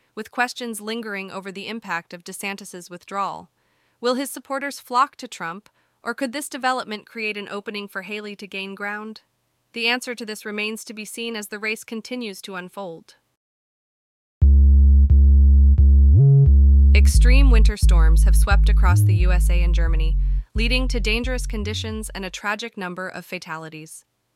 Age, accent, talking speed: 20-39, American, 150 wpm